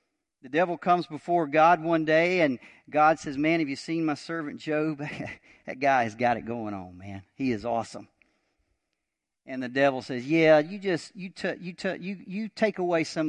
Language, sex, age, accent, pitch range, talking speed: English, male, 50-69, American, 115-160 Hz, 195 wpm